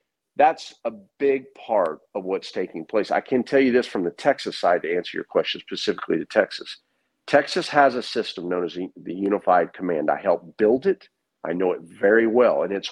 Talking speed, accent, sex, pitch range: 205 wpm, American, male, 95-150 Hz